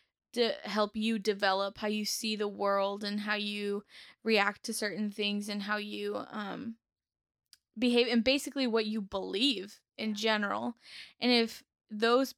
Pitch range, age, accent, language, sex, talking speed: 205-235 Hz, 10-29, American, English, female, 150 wpm